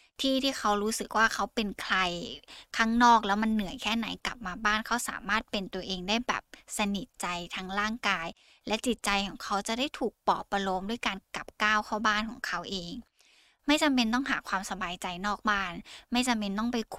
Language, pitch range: Thai, 195-235 Hz